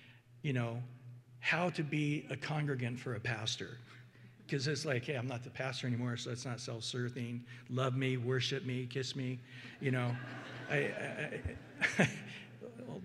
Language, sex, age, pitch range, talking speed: English, male, 60-79, 120-165 Hz, 165 wpm